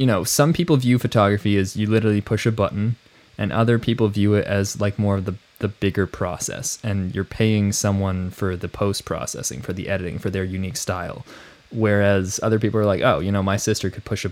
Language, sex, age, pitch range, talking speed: English, male, 20-39, 95-115 Hz, 220 wpm